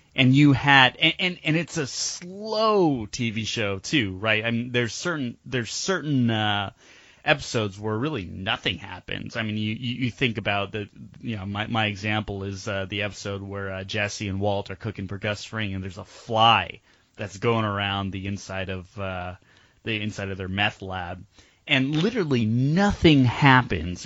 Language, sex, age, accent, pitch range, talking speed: English, male, 20-39, American, 100-125 Hz, 180 wpm